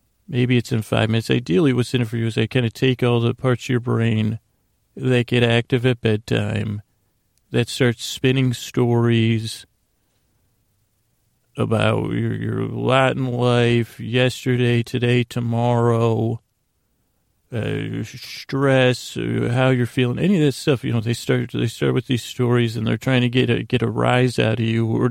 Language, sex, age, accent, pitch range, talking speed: English, male, 40-59, American, 115-130 Hz, 165 wpm